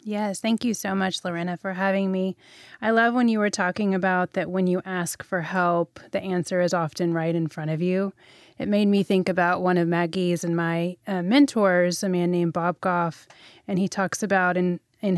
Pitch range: 175-200 Hz